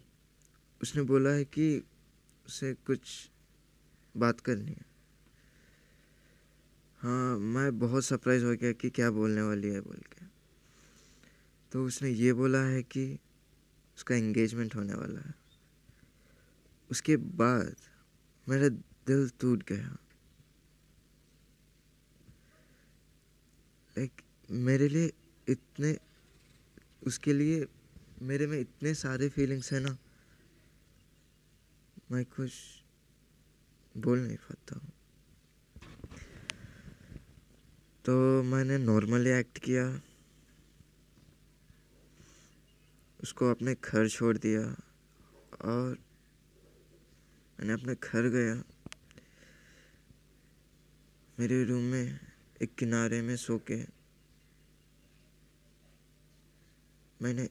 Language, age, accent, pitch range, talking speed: Hindi, 20-39, native, 115-135 Hz, 85 wpm